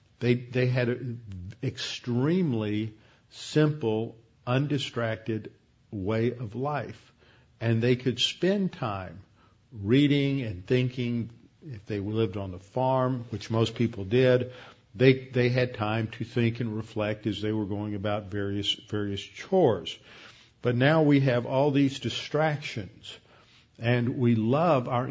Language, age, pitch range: English, 50-69, 110-130 Hz